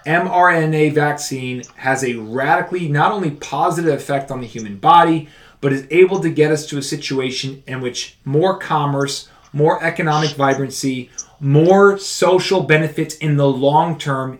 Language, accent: English, American